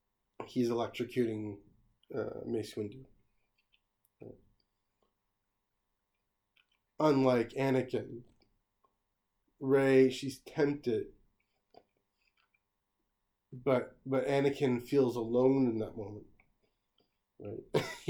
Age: 30-49